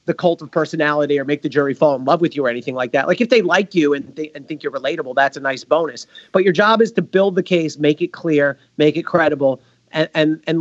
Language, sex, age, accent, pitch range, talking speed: English, male, 40-59, American, 145-175 Hz, 275 wpm